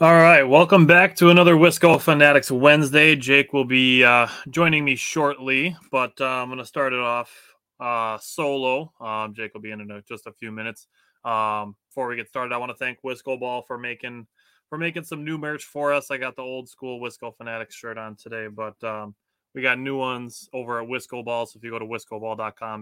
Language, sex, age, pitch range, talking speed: English, male, 20-39, 115-140 Hz, 220 wpm